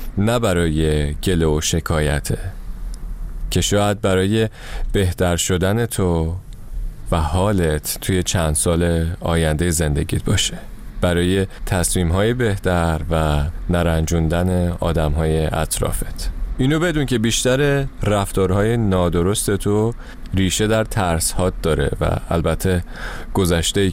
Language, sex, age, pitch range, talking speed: Persian, male, 30-49, 85-105 Hz, 110 wpm